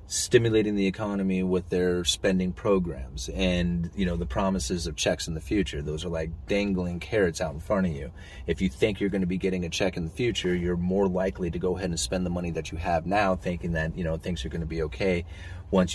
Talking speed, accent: 245 wpm, American